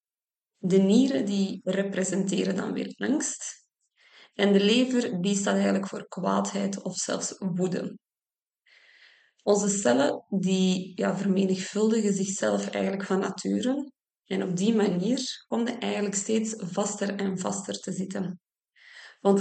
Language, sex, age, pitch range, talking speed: Dutch, female, 20-39, 185-215 Hz, 120 wpm